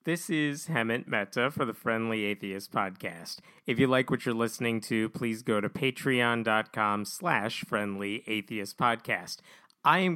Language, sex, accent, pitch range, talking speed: English, male, American, 110-135 Hz, 155 wpm